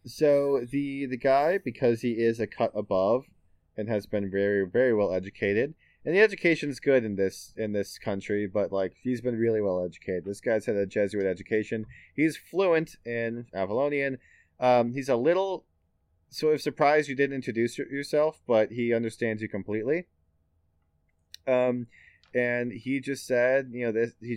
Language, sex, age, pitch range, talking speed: English, male, 20-39, 100-130 Hz, 170 wpm